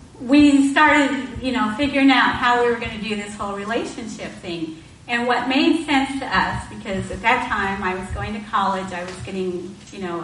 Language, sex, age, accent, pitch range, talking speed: English, female, 40-59, American, 190-255 Hz, 210 wpm